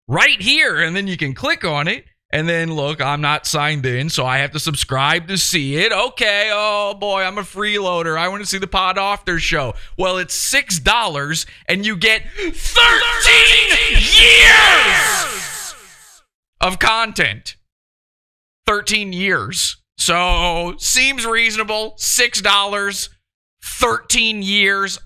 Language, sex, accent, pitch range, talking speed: English, male, American, 125-190 Hz, 140 wpm